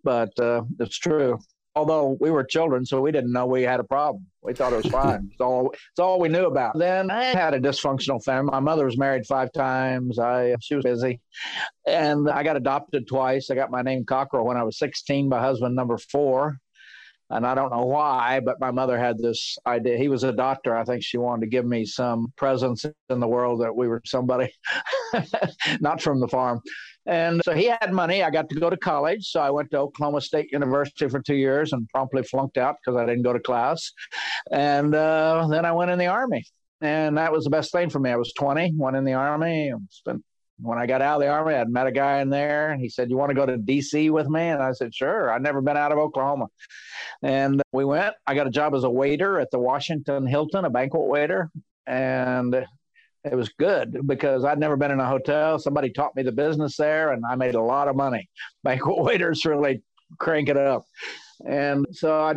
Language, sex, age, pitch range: English, male, 50-69, 125-150 Hz